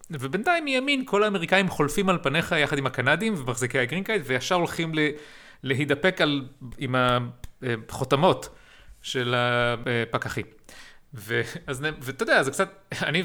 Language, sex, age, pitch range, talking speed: Hebrew, male, 30-49, 135-175 Hz, 115 wpm